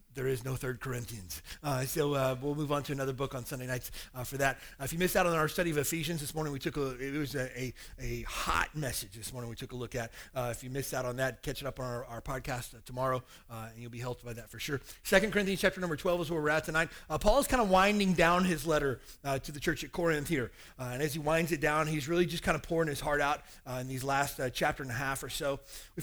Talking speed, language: 295 wpm, English